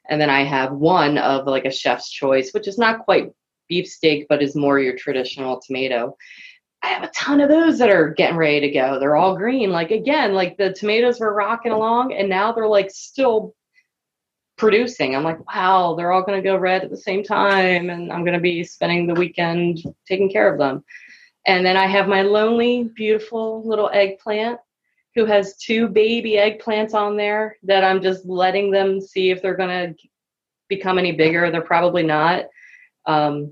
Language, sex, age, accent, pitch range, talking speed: English, female, 30-49, American, 145-210 Hz, 195 wpm